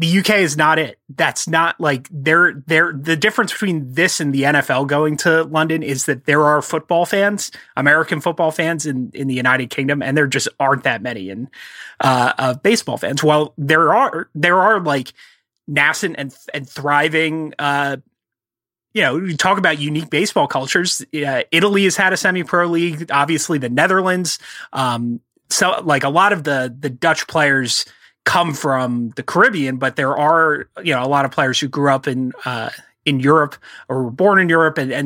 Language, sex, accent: English, male, American